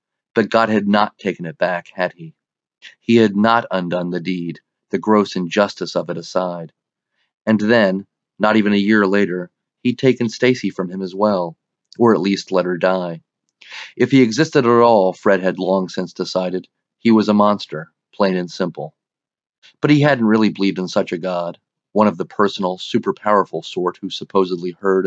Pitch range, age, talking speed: 95-110 Hz, 40-59, 180 wpm